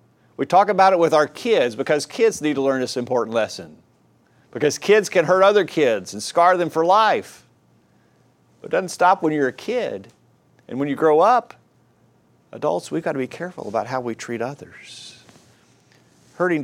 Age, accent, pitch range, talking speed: 50-69, American, 115-160 Hz, 185 wpm